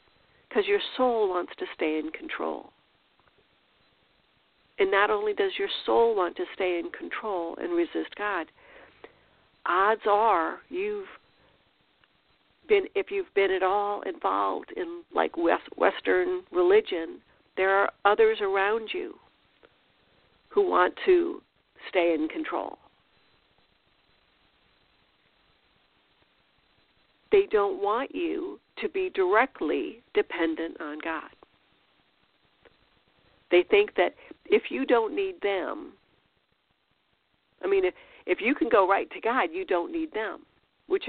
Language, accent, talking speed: English, American, 115 wpm